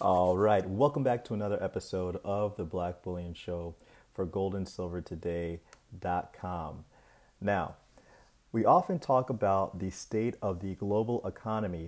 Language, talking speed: English, 125 wpm